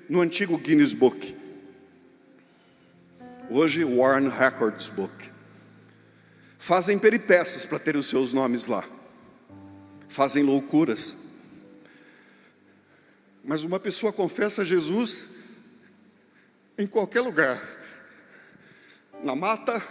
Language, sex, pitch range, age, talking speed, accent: Portuguese, male, 165-260 Hz, 60-79, 85 wpm, Brazilian